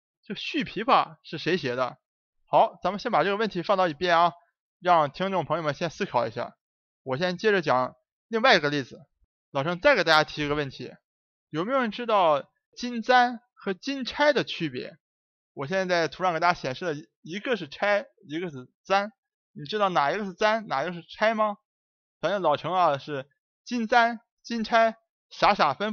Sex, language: male, Chinese